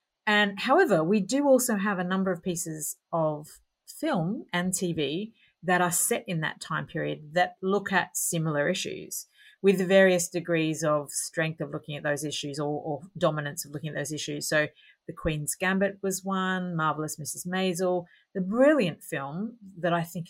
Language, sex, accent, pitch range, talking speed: English, female, Australian, 160-215 Hz, 175 wpm